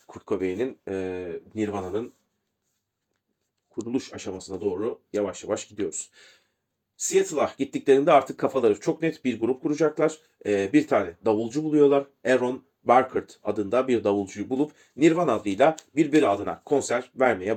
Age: 40-59